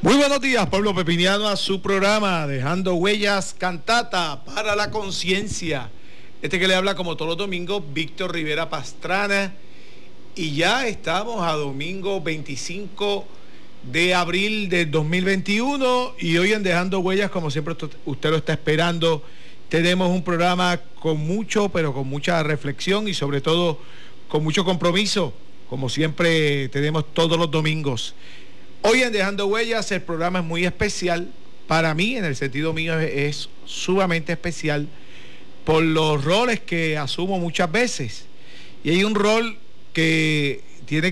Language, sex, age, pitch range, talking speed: Spanish, male, 50-69, 145-195 Hz, 145 wpm